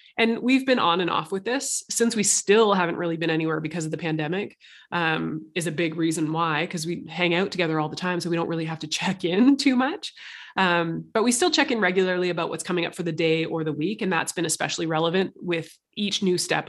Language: English